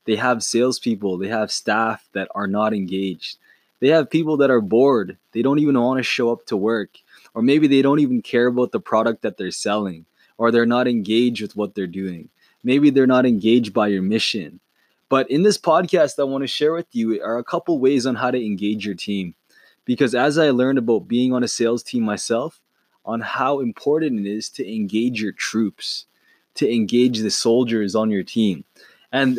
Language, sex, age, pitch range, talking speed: English, male, 20-39, 110-140 Hz, 205 wpm